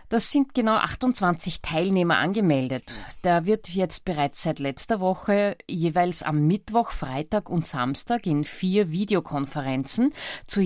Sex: female